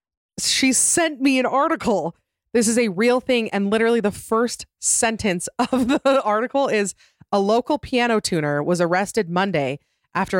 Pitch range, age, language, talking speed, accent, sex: 150-205 Hz, 30-49, English, 155 wpm, American, female